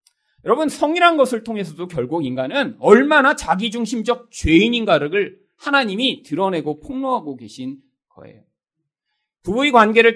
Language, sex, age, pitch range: Korean, male, 40-59, 160-260 Hz